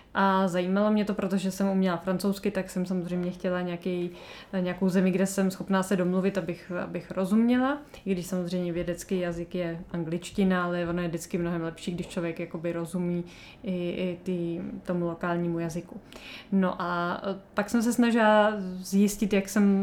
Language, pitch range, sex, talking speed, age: Czech, 175-200 Hz, female, 165 wpm, 20-39